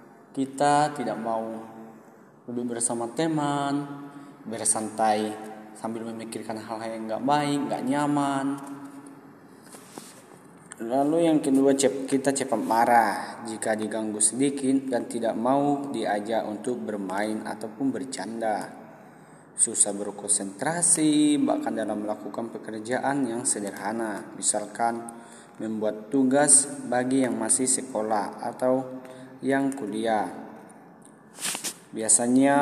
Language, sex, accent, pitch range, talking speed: Indonesian, male, native, 110-140 Hz, 95 wpm